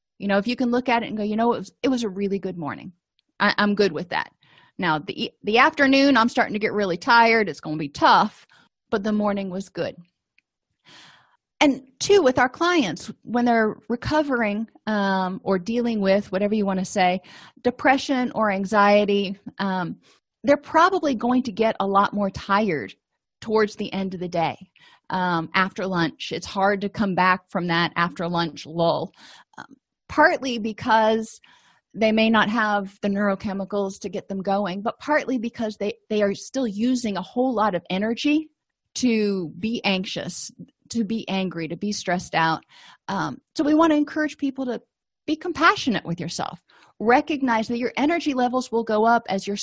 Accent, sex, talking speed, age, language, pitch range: American, female, 185 wpm, 30-49, English, 190-245 Hz